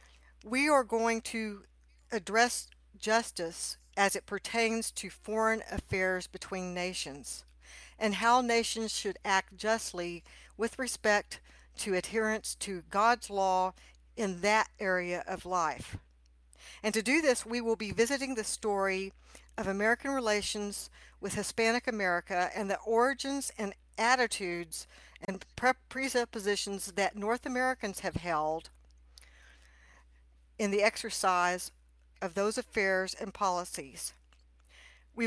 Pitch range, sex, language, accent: 175-225 Hz, female, English, American